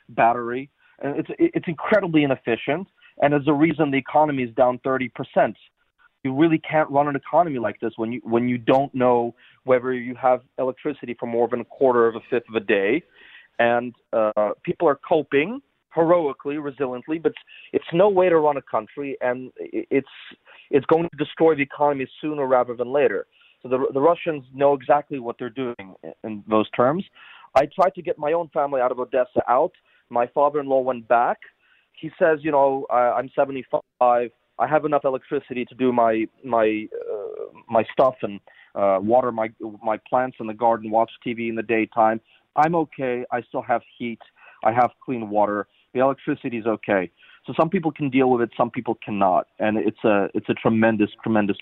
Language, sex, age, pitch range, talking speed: English, male, 30-49, 115-150 Hz, 190 wpm